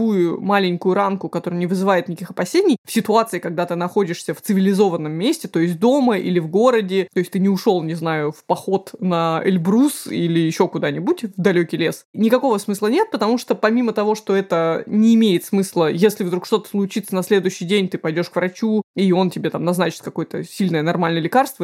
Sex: female